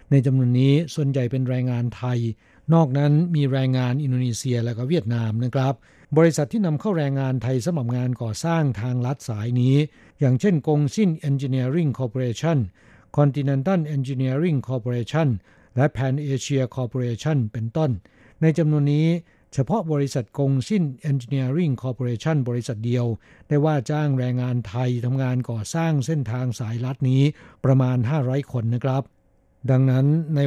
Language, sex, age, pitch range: Thai, male, 60-79, 120-145 Hz